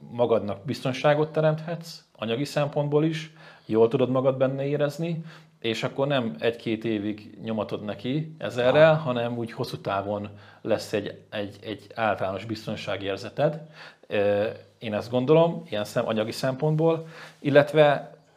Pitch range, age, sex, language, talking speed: 105-150 Hz, 40-59, male, Hungarian, 120 wpm